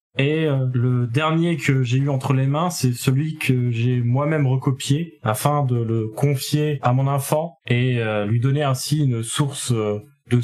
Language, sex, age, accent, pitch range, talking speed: French, male, 20-39, French, 115-145 Hz, 165 wpm